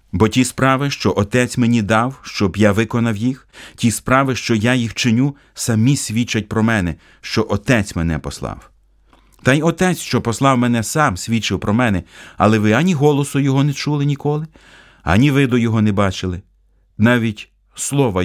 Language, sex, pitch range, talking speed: Ukrainian, male, 95-125 Hz, 165 wpm